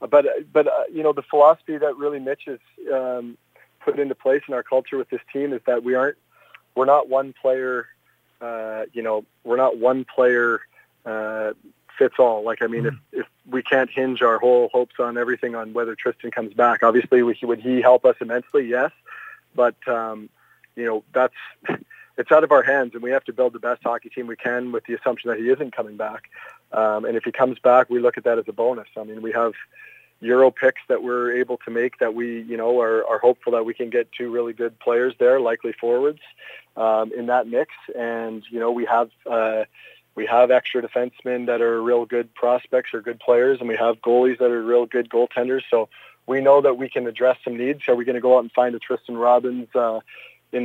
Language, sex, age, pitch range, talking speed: English, male, 40-59, 115-130 Hz, 220 wpm